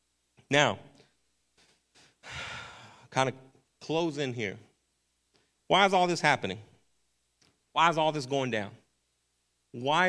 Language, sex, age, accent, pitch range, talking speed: English, male, 40-59, American, 100-140 Hz, 105 wpm